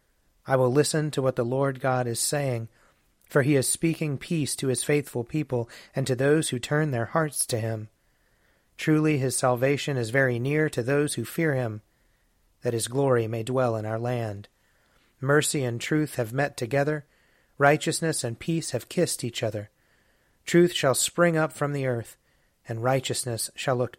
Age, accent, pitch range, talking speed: 30-49, American, 115-145 Hz, 180 wpm